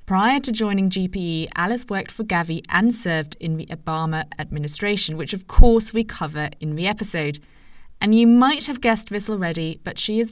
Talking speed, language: 185 wpm, English